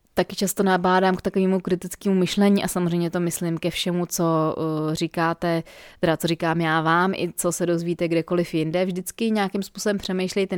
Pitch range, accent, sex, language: 165-190 Hz, native, female, Czech